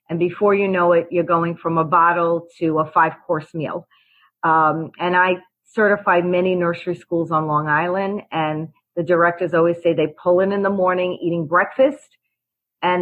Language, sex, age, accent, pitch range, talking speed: English, female, 40-59, American, 160-200 Hz, 175 wpm